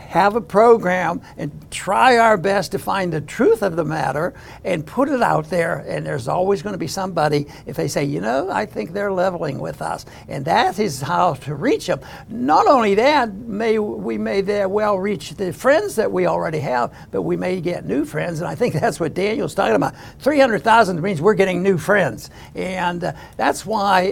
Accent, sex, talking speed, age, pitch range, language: American, male, 205 wpm, 60-79, 170-215 Hz, English